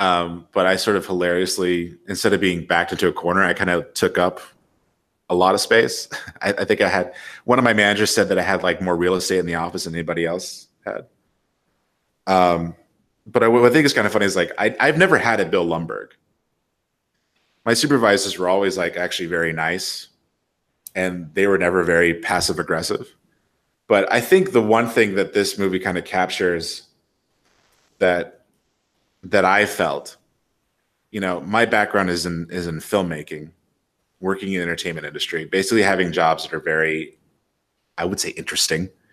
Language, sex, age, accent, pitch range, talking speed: English, male, 30-49, American, 85-95 Hz, 180 wpm